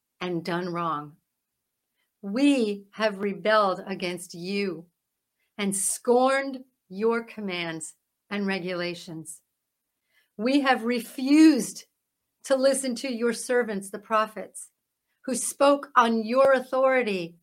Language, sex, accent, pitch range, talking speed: English, female, American, 210-270 Hz, 100 wpm